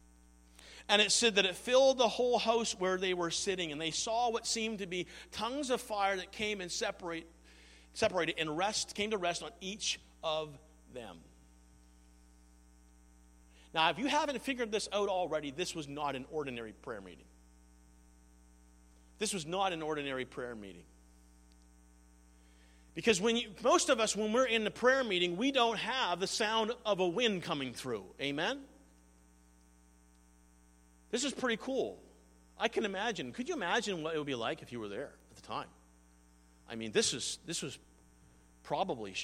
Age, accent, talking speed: 50-69, American, 170 wpm